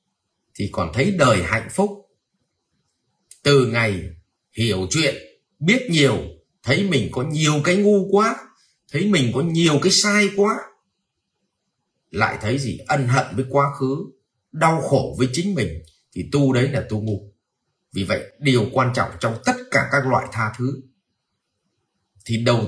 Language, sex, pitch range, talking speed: Vietnamese, male, 105-140 Hz, 155 wpm